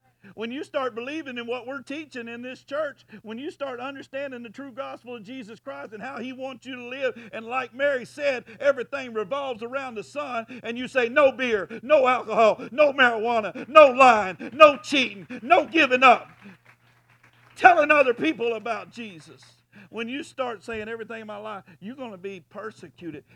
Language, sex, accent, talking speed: English, male, American, 180 wpm